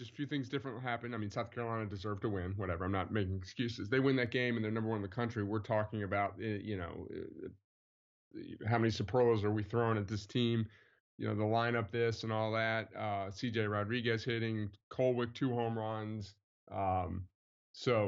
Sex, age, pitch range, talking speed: male, 20-39, 100-115 Hz, 205 wpm